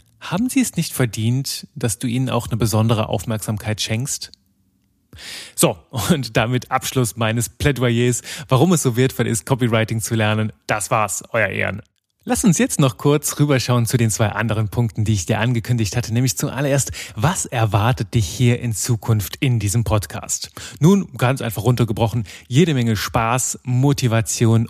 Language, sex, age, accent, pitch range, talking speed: German, male, 30-49, German, 110-140 Hz, 160 wpm